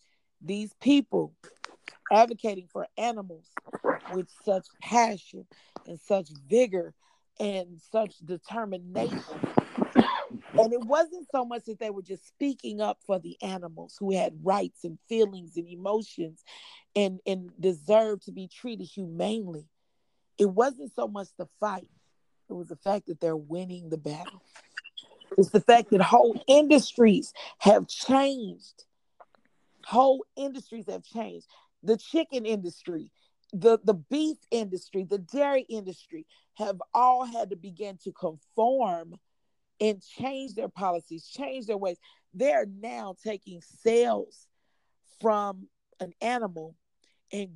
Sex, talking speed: female, 125 wpm